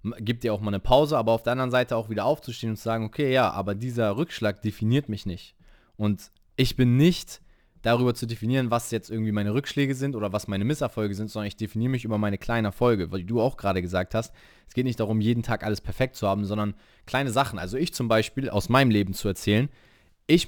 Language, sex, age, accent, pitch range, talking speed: German, male, 20-39, German, 105-130 Hz, 235 wpm